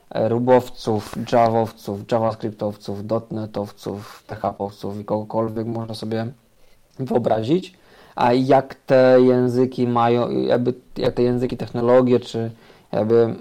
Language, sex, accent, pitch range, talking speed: Polish, male, native, 115-135 Hz, 100 wpm